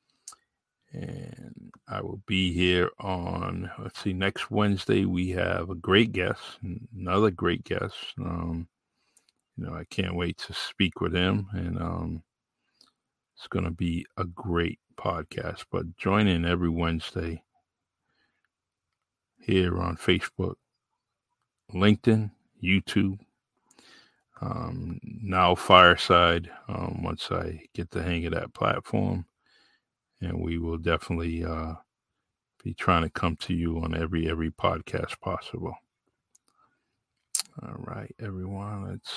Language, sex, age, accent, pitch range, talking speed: English, male, 50-69, American, 85-100 Hz, 120 wpm